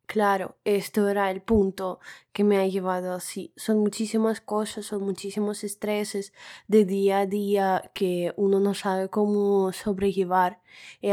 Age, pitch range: 20-39, 180-200 Hz